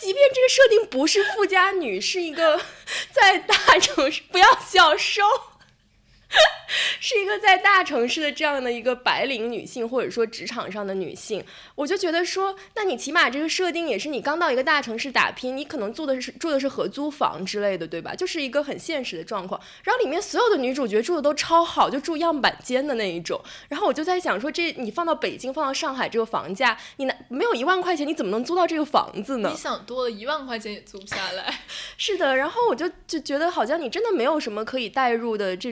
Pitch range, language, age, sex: 220-335 Hz, English, 20-39, female